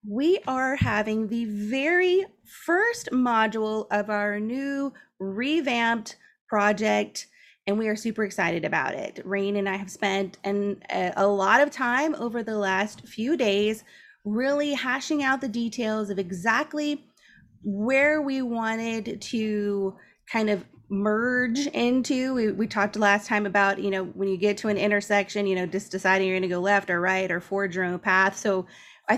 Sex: female